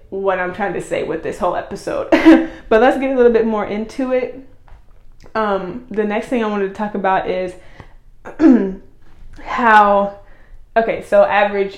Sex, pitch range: female, 185-250 Hz